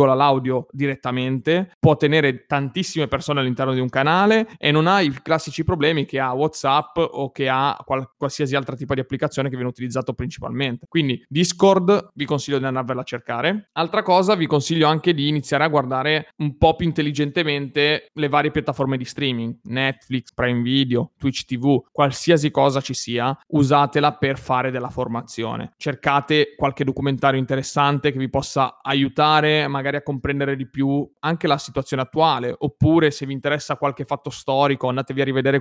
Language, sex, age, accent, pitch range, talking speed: Italian, male, 30-49, native, 130-150 Hz, 165 wpm